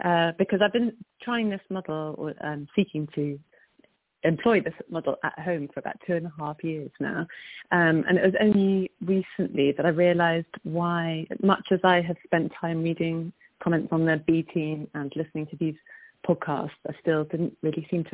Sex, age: female, 30-49